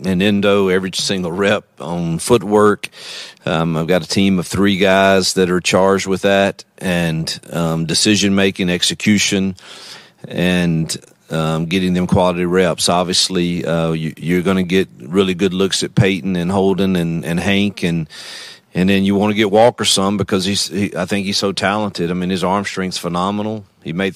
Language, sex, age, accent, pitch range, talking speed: English, male, 40-59, American, 90-100 Hz, 180 wpm